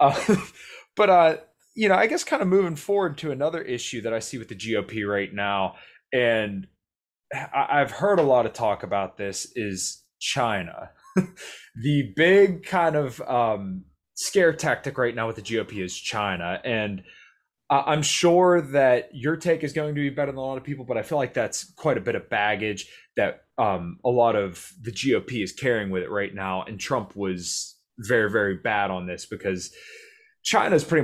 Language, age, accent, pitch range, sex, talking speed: English, 20-39, American, 100-150 Hz, male, 190 wpm